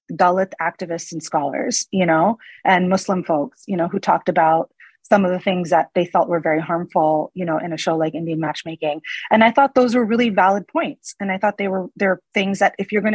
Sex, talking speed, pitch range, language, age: female, 235 wpm, 170-205 Hz, English, 30-49